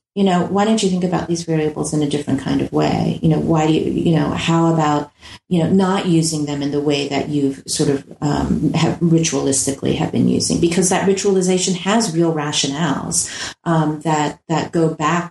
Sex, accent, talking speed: female, American, 210 wpm